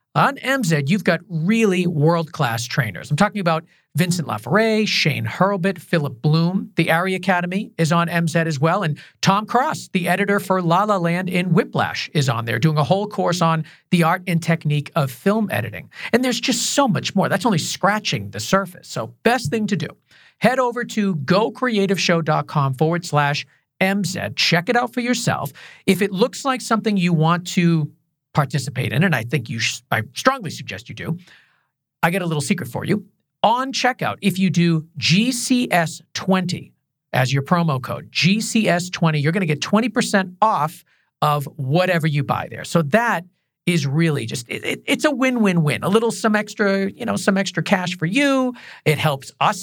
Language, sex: English, male